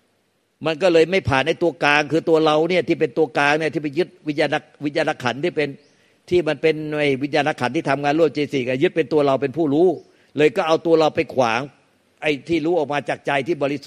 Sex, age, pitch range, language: male, 60-79, 145-165 Hz, Thai